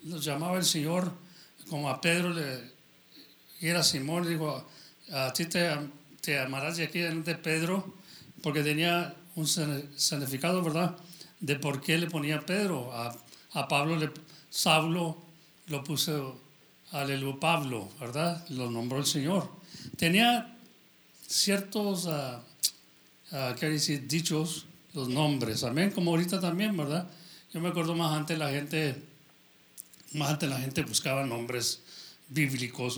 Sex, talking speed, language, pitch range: male, 135 wpm, English, 130-170 Hz